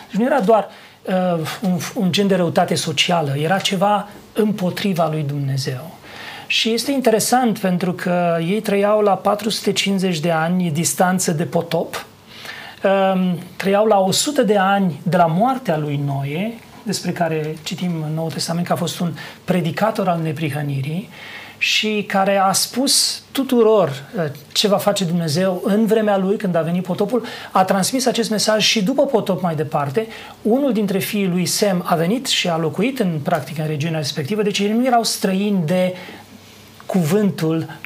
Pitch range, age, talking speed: 165-205 Hz, 40-59, 160 wpm